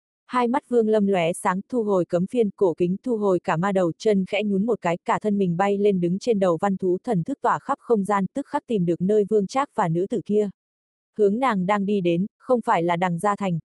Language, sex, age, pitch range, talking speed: Vietnamese, female, 20-39, 180-225 Hz, 265 wpm